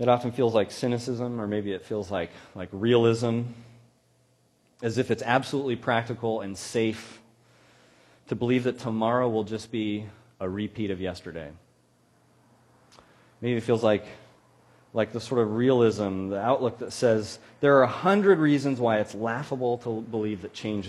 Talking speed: 160 wpm